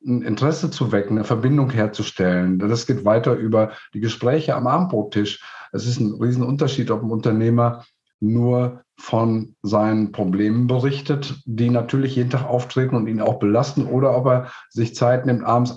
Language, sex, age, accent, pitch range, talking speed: German, male, 50-69, German, 105-125 Hz, 165 wpm